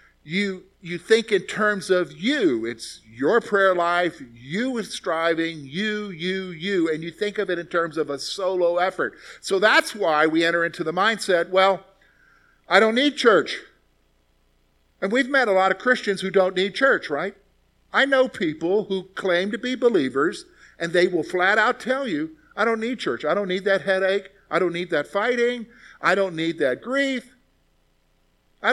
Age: 50-69